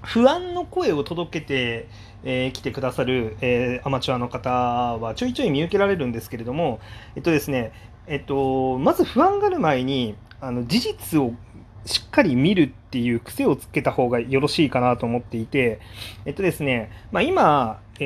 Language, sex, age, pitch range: Japanese, male, 30-49, 115-155 Hz